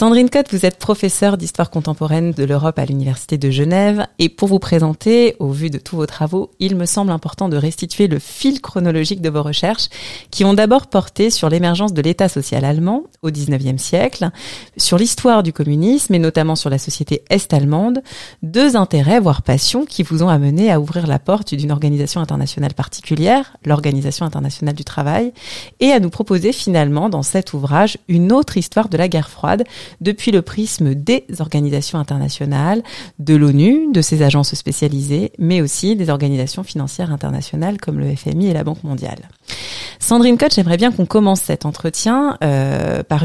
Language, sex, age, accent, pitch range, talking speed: French, female, 30-49, French, 150-200 Hz, 180 wpm